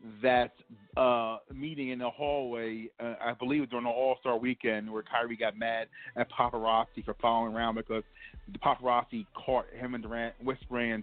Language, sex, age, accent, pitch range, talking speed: English, male, 40-59, American, 115-130 Hz, 175 wpm